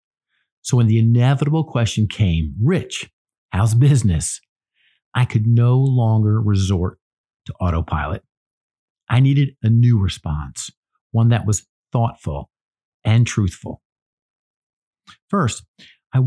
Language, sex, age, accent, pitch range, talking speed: English, male, 50-69, American, 105-145 Hz, 105 wpm